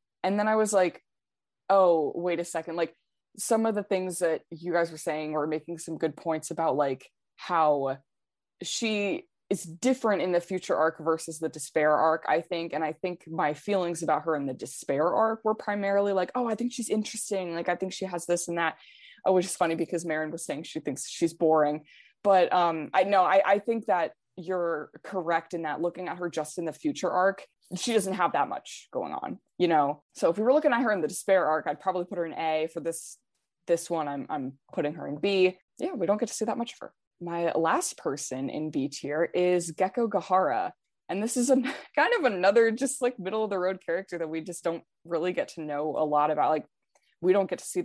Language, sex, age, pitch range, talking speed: English, female, 20-39, 160-195 Hz, 230 wpm